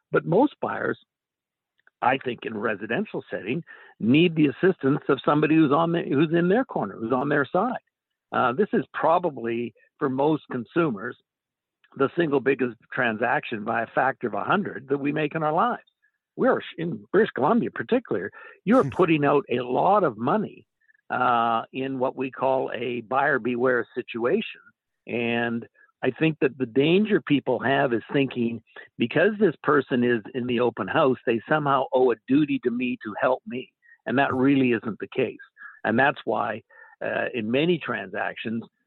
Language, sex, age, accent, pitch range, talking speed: English, male, 60-79, American, 120-155 Hz, 170 wpm